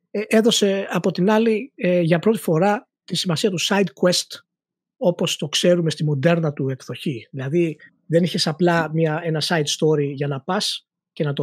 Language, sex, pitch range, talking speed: Greek, male, 150-195 Hz, 170 wpm